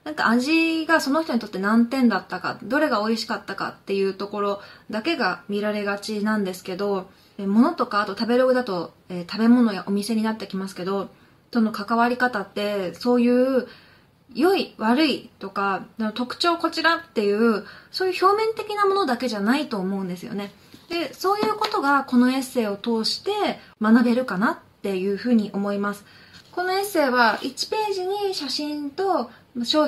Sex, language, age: female, Japanese, 20-39